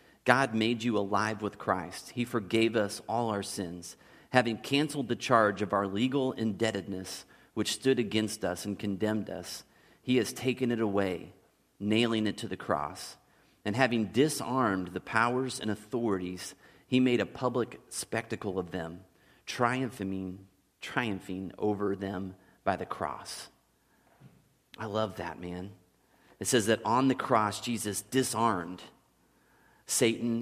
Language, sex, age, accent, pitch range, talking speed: English, male, 30-49, American, 100-120 Hz, 140 wpm